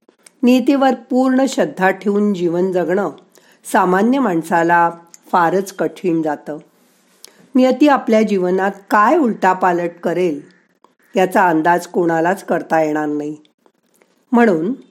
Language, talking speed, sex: Marathi, 90 wpm, female